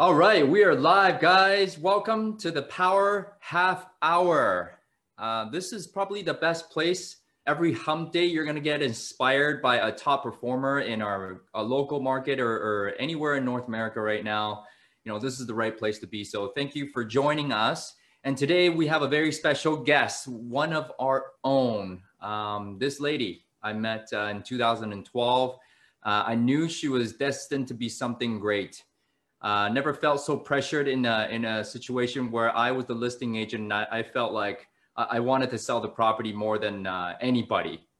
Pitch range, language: 115-150 Hz, English